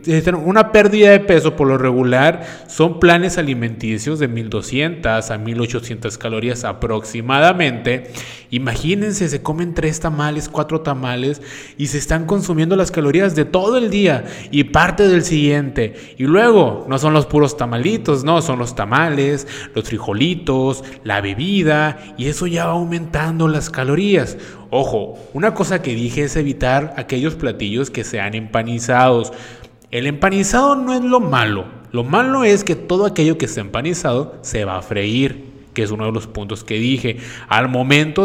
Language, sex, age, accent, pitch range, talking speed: Spanish, male, 20-39, Mexican, 120-165 Hz, 155 wpm